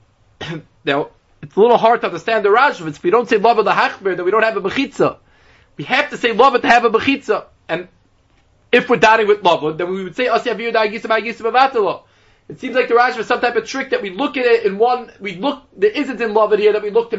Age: 30-49